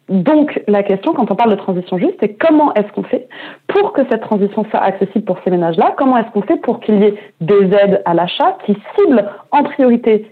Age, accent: 30-49, French